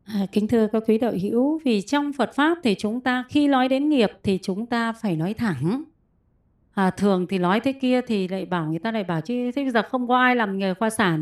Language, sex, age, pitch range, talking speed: Vietnamese, female, 20-39, 205-275 Hz, 245 wpm